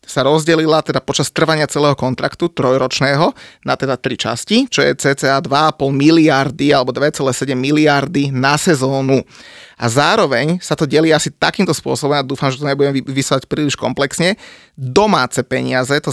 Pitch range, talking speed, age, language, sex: 130-155 Hz, 155 wpm, 30-49, Slovak, male